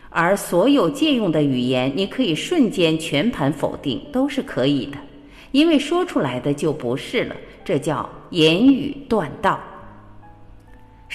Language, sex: Chinese, female